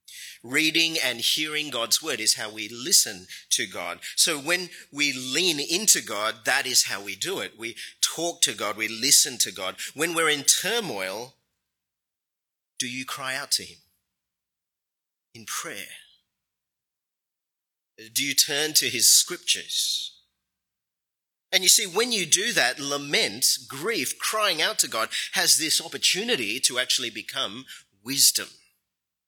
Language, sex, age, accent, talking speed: English, male, 30-49, Australian, 140 wpm